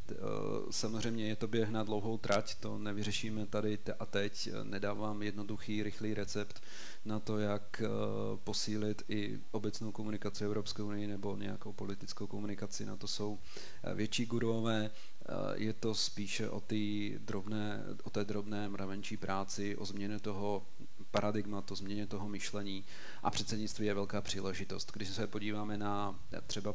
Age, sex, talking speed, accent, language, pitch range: 40-59, male, 135 wpm, native, Czech, 100-105 Hz